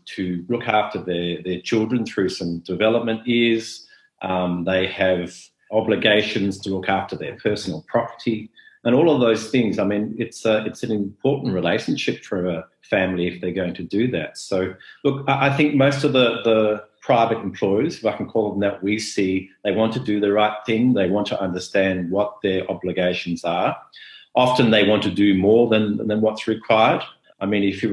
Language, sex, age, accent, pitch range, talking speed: English, male, 40-59, Australian, 95-115 Hz, 195 wpm